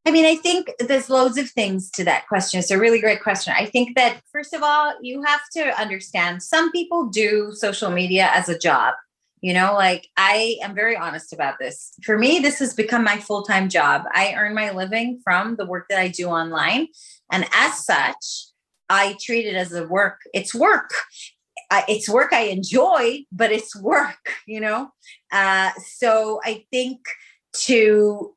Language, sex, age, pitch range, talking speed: English, female, 30-49, 180-230 Hz, 185 wpm